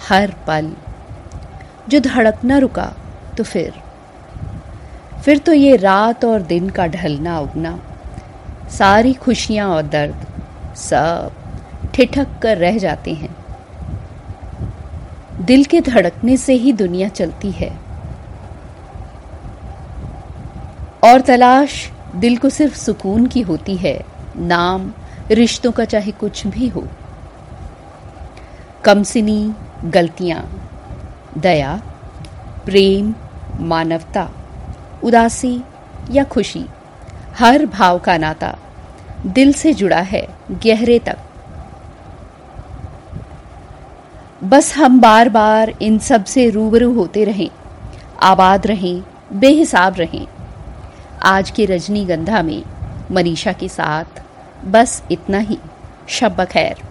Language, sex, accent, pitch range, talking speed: Hindi, female, native, 165-235 Hz, 100 wpm